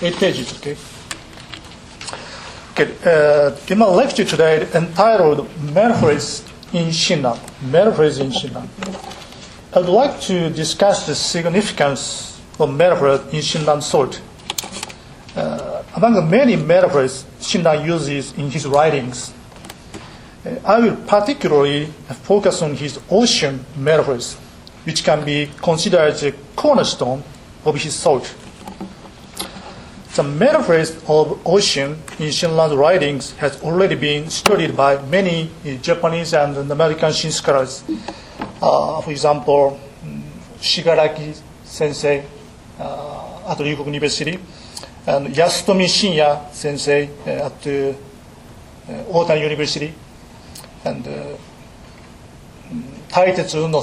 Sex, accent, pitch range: male, Japanese, 140-170 Hz